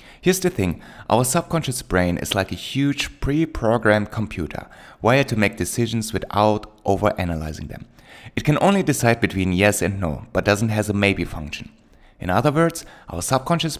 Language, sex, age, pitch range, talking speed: English, male, 30-49, 95-125 Hz, 165 wpm